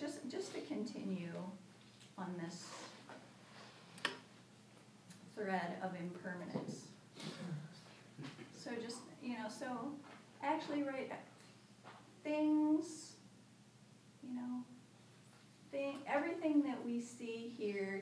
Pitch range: 180-230 Hz